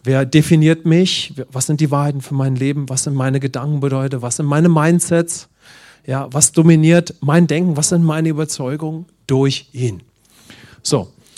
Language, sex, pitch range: English, male, 125-155 Hz